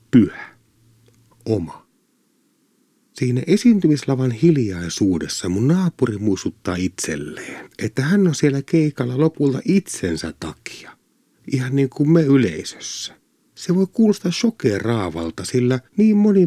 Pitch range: 110-170 Hz